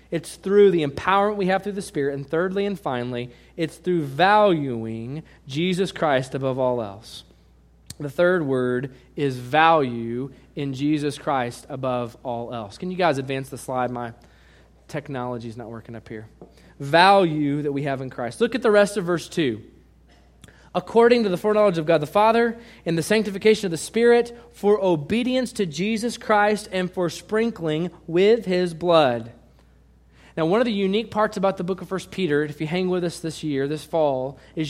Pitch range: 135-200 Hz